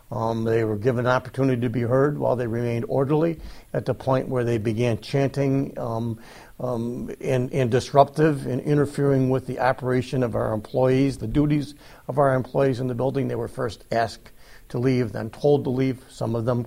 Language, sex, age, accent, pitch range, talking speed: English, male, 60-79, American, 125-140 Hz, 195 wpm